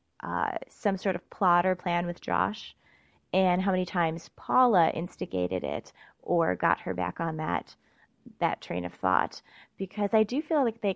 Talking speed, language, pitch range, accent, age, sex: 175 wpm, English, 170-220 Hz, American, 20-39, female